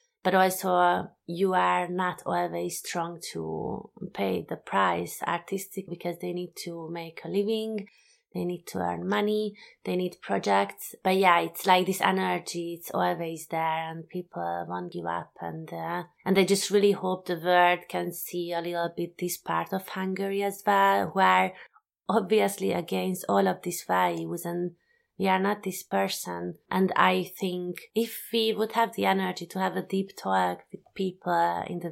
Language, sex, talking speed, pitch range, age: English, female, 175 wpm, 170-195 Hz, 30-49